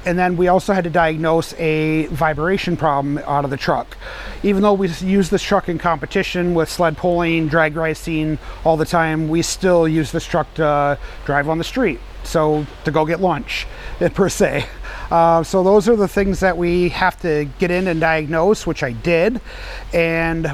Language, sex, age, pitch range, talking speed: English, male, 30-49, 150-175 Hz, 190 wpm